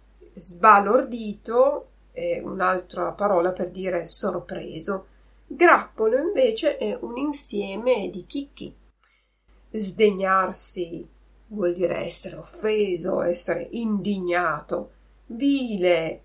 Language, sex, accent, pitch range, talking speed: Italian, female, native, 180-220 Hz, 80 wpm